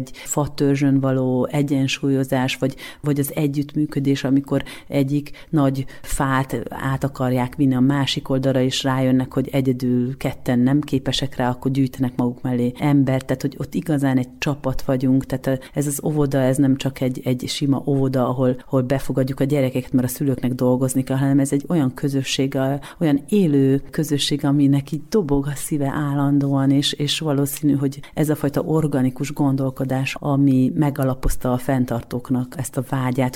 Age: 30-49